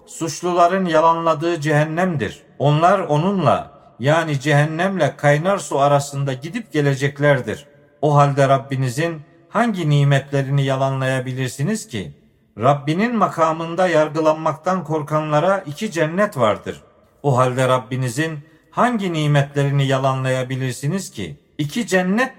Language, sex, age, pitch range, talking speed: Turkish, male, 50-69, 135-175 Hz, 95 wpm